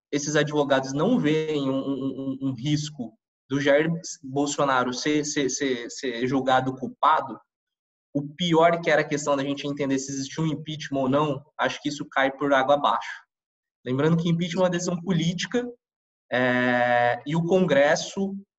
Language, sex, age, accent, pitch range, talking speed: Portuguese, male, 20-39, Brazilian, 140-180 Hz, 160 wpm